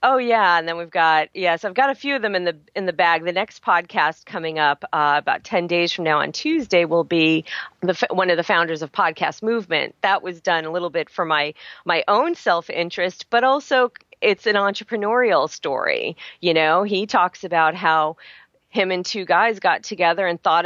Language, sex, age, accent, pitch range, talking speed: English, female, 40-59, American, 155-190 Hz, 220 wpm